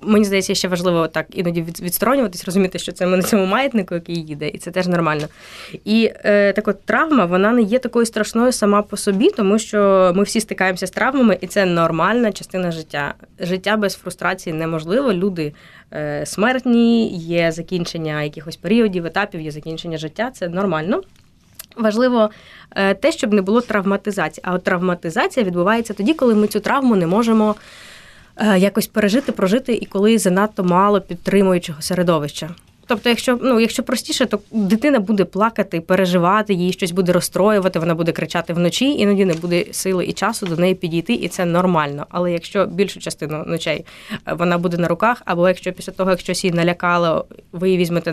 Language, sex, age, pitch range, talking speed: Ukrainian, female, 20-39, 170-210 Hz, 170 wpm